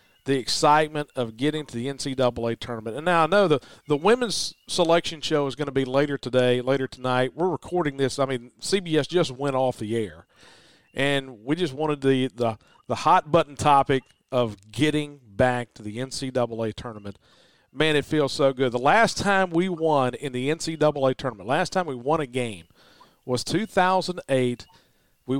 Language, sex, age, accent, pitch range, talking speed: English, male, 40-59, American, 130-155 Hz, 185 wpm